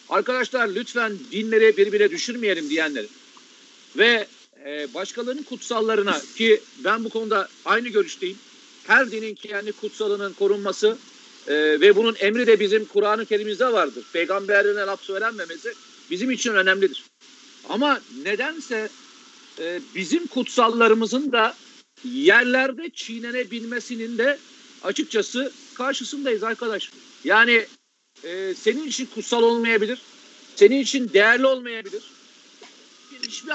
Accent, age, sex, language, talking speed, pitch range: native, 50-69, male, Turkish, 105 wpm, 215-275 Hz